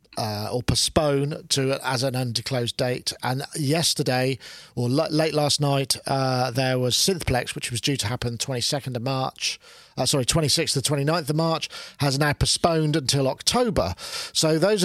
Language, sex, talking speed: English, male, 165 wpm